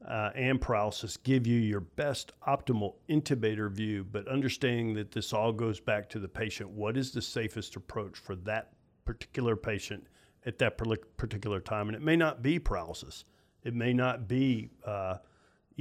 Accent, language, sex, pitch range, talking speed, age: American, English, male, 105-125 Hz, 165 wpm, 50-69